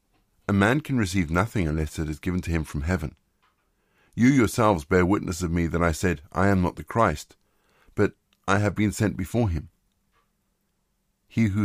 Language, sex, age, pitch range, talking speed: English, male, 50-69, 85-110 Hz, 185 wpm